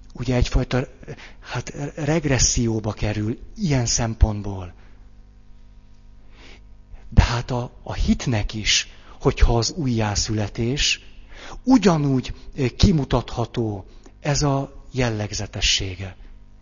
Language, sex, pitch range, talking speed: Hungarian, male, 105-140 Hz, 70 wpm